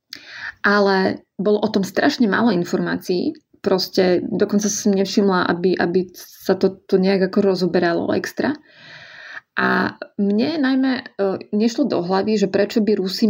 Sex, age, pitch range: female, 20-39, 185-215 Hz